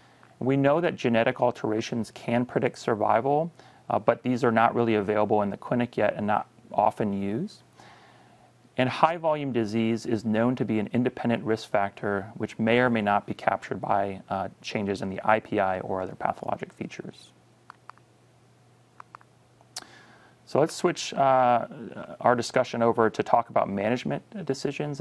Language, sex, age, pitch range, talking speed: English, male, 30-49, 105-120 Hz, 155 wpm